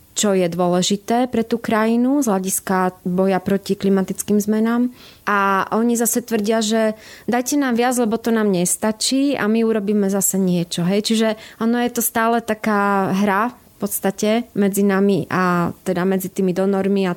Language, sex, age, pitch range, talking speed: Slovak, female, 20-39, 185-215 Hz, 165 wpm